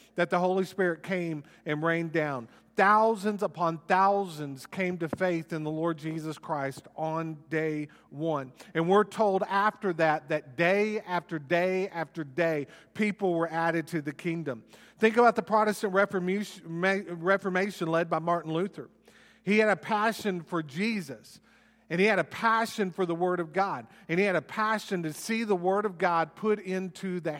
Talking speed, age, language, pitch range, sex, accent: 170 wpm, 40-59, English, 145-195 Hz, male, American